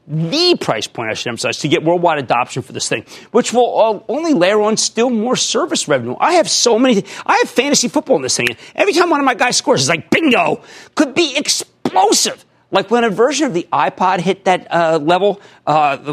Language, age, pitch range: English, 40-59, 155-245 Hz